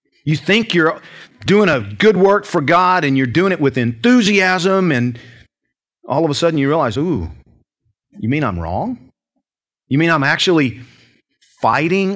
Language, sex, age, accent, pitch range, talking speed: English, male, 40-59, American, 115-165 Hz, 160 wpm